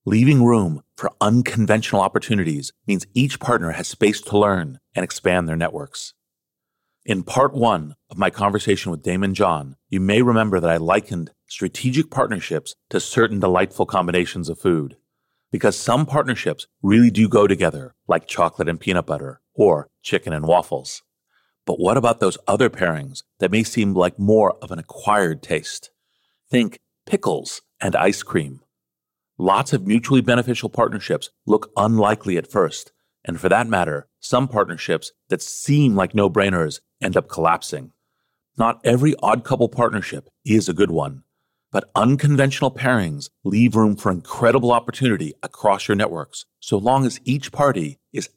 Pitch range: 90-120 Hz